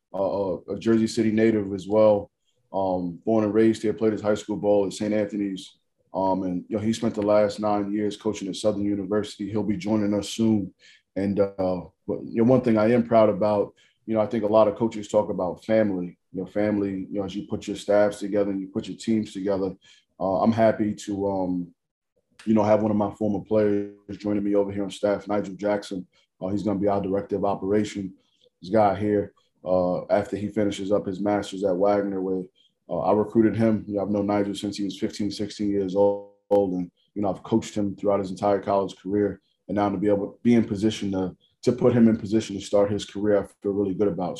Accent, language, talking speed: American, English, 230 wpm